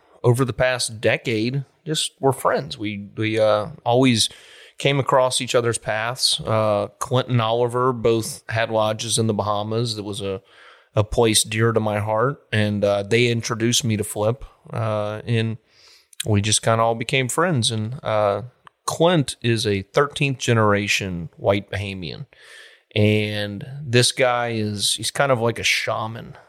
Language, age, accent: English, 30-49, American